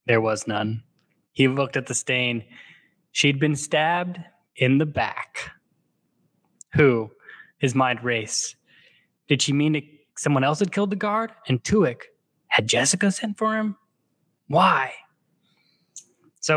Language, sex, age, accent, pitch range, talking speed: English, male, 10-29, American, 130-170 Hz, 135 wpm